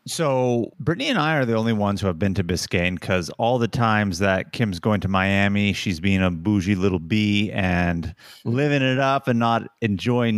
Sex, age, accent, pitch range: male, 30-49, American, 95-125 Hz